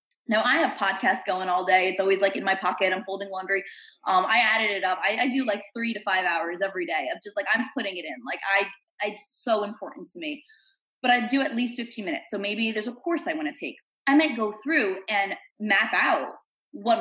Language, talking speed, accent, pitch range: English, 245 wpm, American, 195-270 Hz